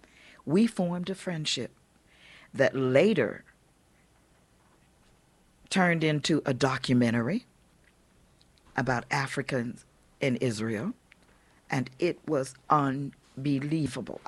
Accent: American